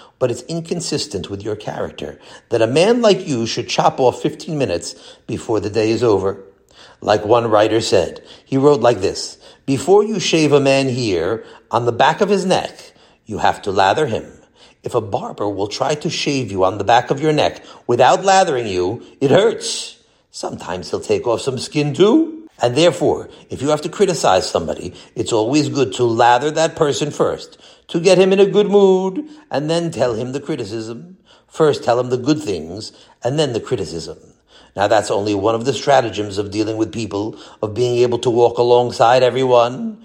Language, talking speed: English, 195 wpm